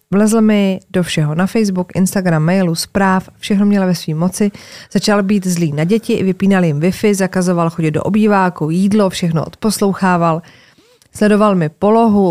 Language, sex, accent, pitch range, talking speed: Czech, female, native, 175-210 Hz, 155 wpm